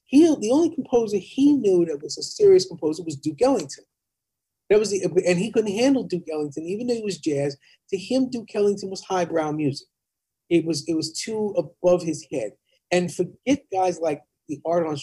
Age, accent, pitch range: 40-59, American, 145-185 Hz